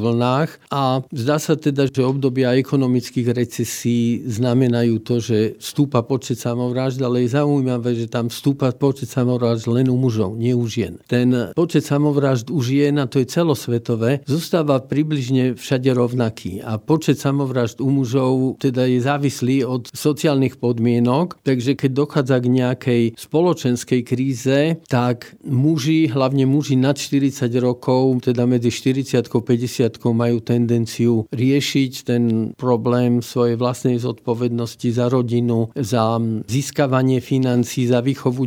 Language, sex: Slovak, male